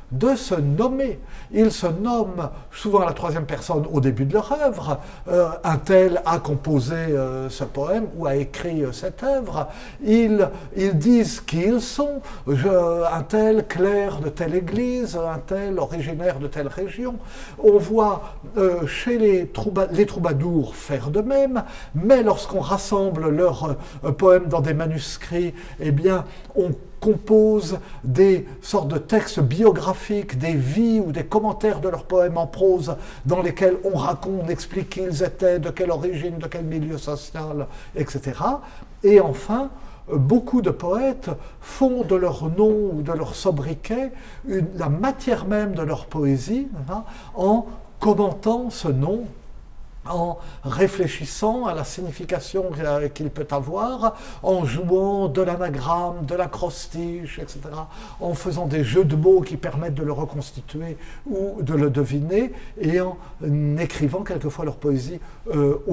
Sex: male